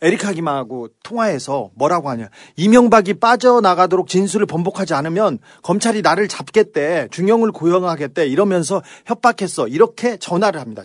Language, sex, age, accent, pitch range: Korean, male, 40-59, native, 165-225 Hz